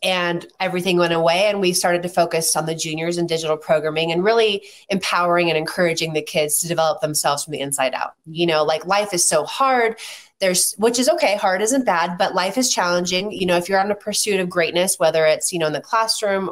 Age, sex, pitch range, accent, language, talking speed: 20-39, female, 165-205 Hz, American, English, 230 wpm